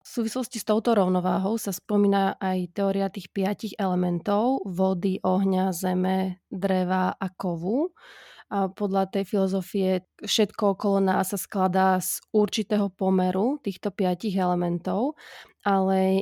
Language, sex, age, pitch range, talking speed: Slovak, female, 20-39, 185-210 Hz, 125 wpm